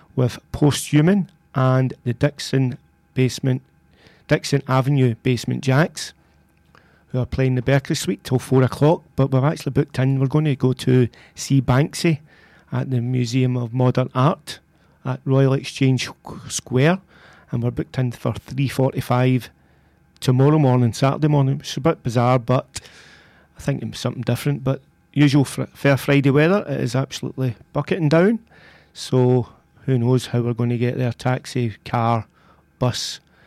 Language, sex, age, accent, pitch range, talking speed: English, male, 40-59, British, 125-145 Hz, 155 wpm